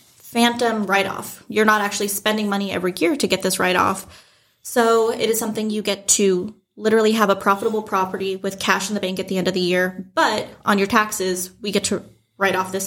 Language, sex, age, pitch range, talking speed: English, female, 20-39, 190-225 Hz, 215 wpm